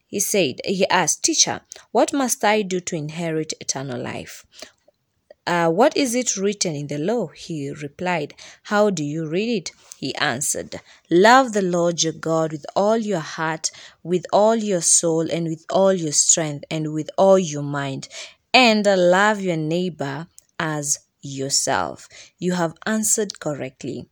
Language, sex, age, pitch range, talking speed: English, female, 20-39, 155-210 Hz, 155 wpm